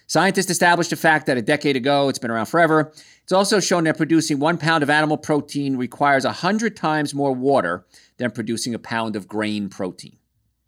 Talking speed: 190 wpm